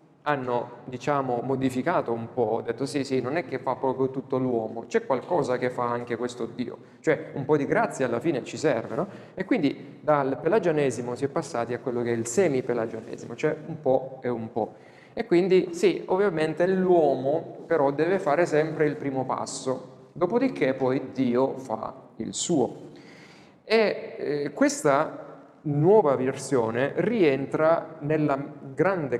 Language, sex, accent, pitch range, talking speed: Italian, male, native, 125-155 Hz, 160 wpm